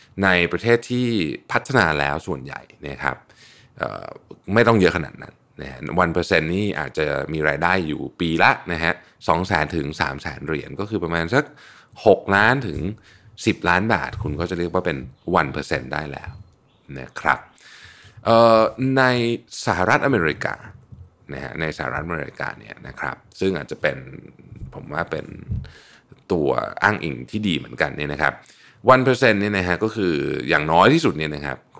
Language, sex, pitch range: Thai, male, 75-115 Hz